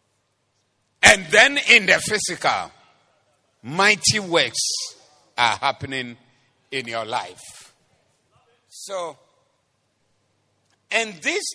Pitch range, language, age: 120-170 Hz, English, 50-69